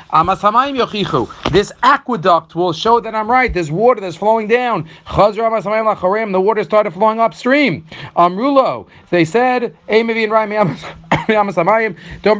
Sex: male